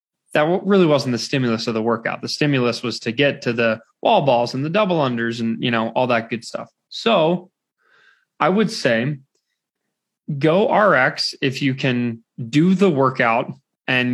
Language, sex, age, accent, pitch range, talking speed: English, male, 20-39, American, 125-170 Hz, 175 wpm